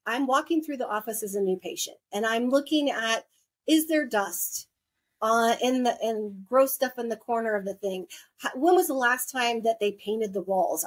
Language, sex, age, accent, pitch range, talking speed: English, female, 30-49, American, 205-260 Hz, 205 wpm